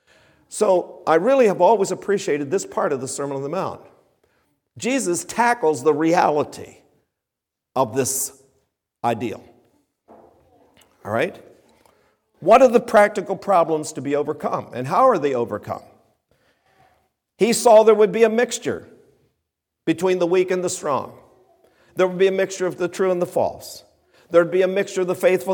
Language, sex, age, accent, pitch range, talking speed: English, male, 50-69, American, 130-195 Hz, 160 wpm